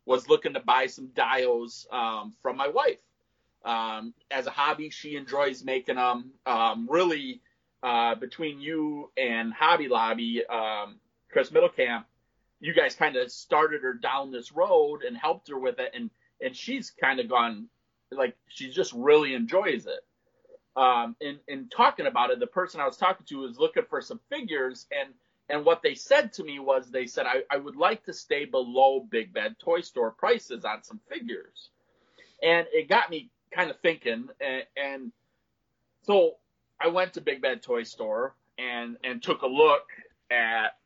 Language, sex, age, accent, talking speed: English, male, 30-49, American, 180 wpm